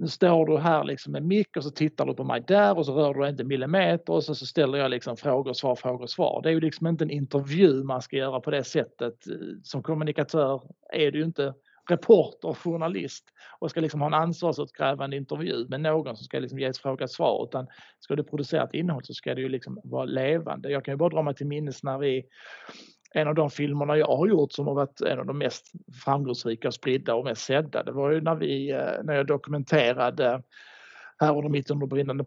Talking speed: 230 wpm